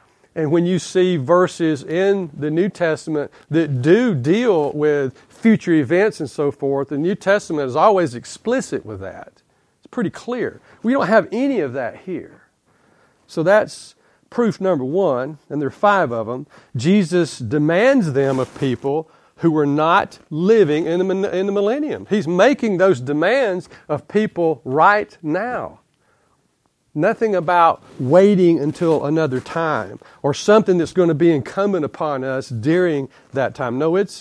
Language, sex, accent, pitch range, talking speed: English, male, American, 145-190 Hz, 155 wpm